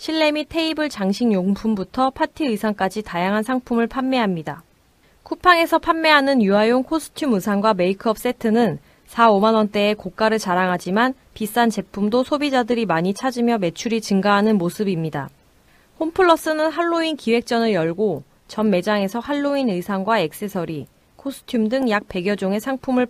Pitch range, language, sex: 200-265 Hz, Korean, female